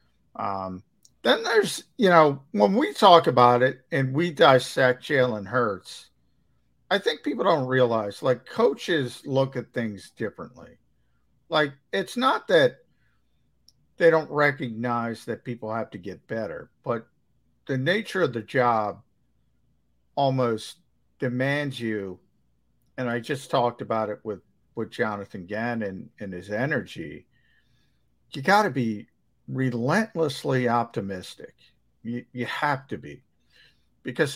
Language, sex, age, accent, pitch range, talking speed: English, male, 50-69, American, 110-140 Hz, 125 wpm